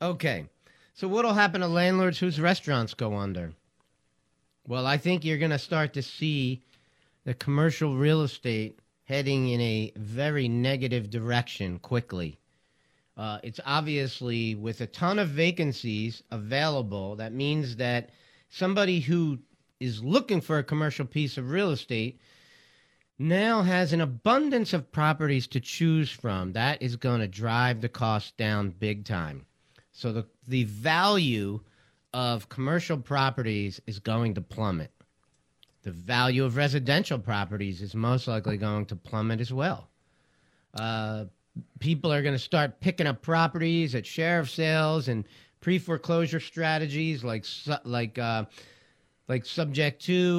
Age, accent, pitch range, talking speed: 50-69, American, 115-160 Hz, 145 wpm